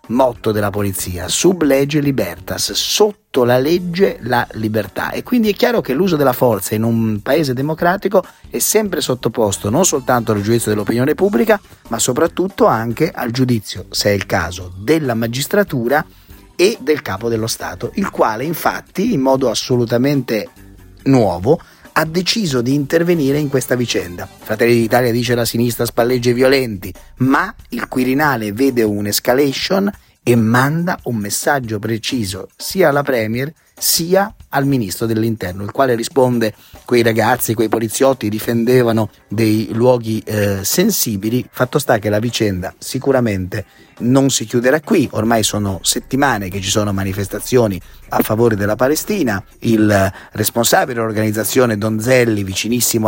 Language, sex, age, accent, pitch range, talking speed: Italian, male, 30-49, native, 110-135 Hz, 140 wpm